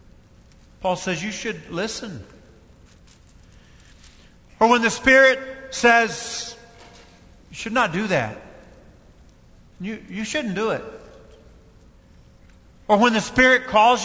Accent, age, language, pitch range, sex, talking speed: American, 50-69, English, 170-235 Hz, male, 105 wpm